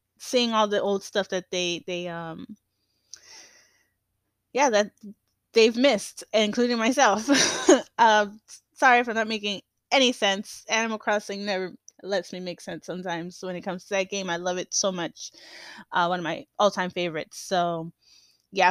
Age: 20-39